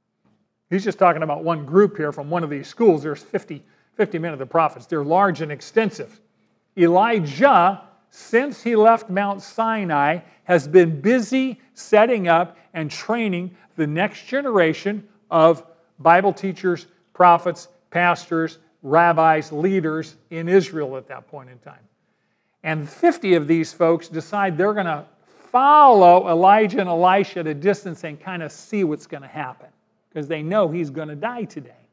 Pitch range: 155-200 Hz